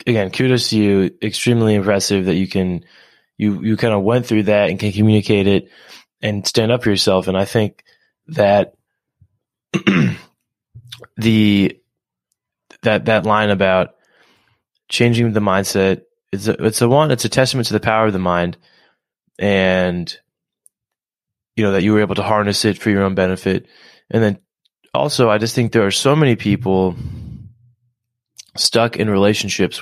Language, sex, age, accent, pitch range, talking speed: English, male, 20-39, American, 95-110 Hz, 155 wpm